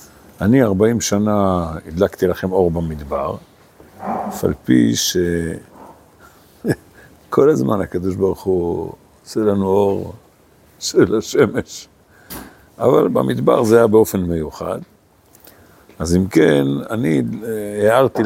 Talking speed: 100 wpm